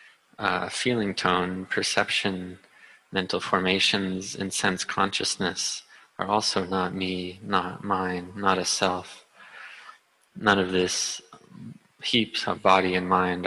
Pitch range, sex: 90-100 Hz, male